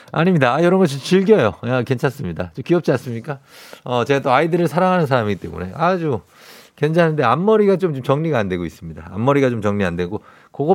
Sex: male